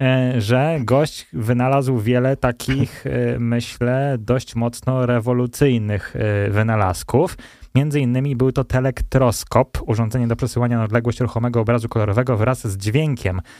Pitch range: 110-135 Hz